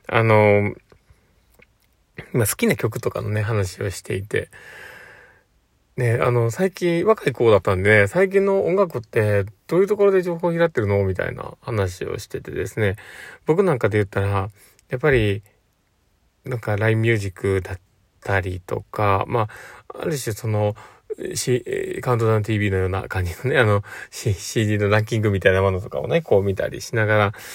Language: Japanese